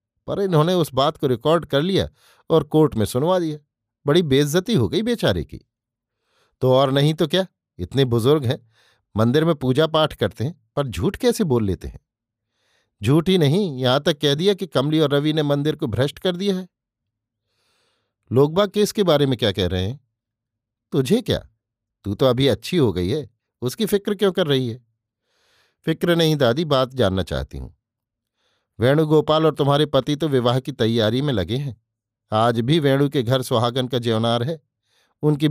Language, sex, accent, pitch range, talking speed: Hindi, male, native, 115-155 Hz, 190 wpm